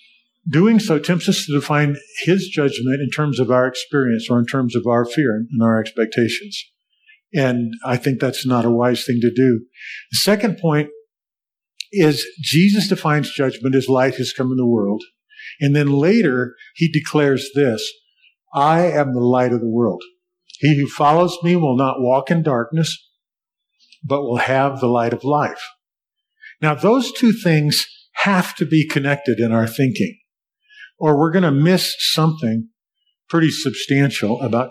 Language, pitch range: English, 130-195 Hz